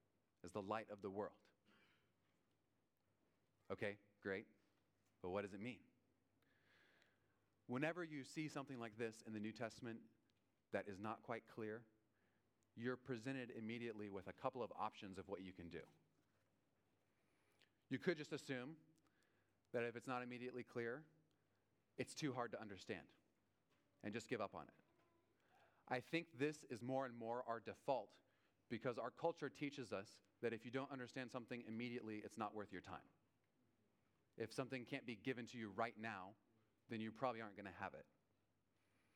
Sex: male